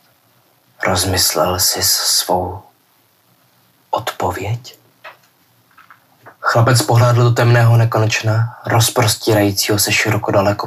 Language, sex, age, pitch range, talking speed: Czech, male, 20-39, 100-120 Hz, 75 wpm